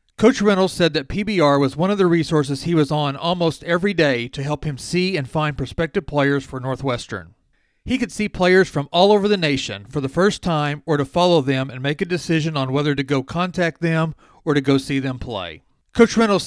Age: 40-59